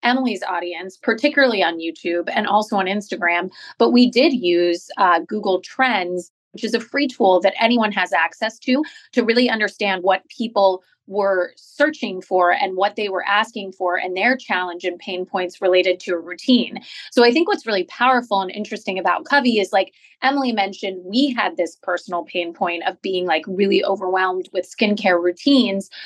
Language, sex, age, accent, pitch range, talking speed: English, female, 30-49, American, 185-225 Hz, 180 wpm